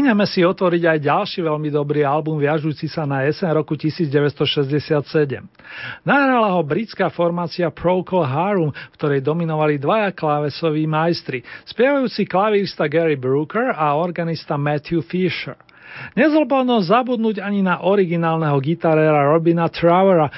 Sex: male